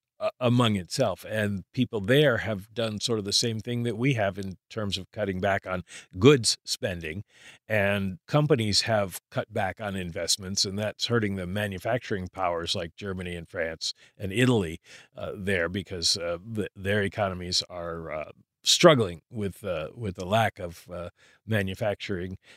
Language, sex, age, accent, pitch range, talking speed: English, male, 50-69, American, 95-115 Hz, 155 wpm